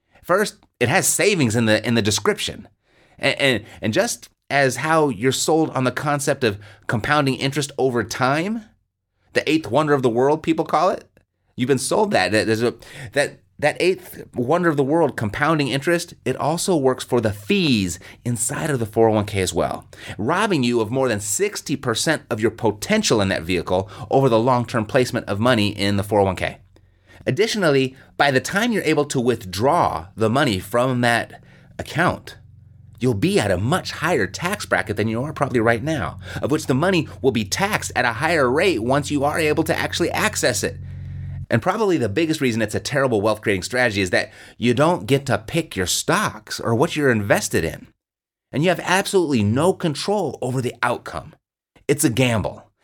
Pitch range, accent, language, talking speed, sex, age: 110-150 Hz, American, English, 185 wpm, male, 30-49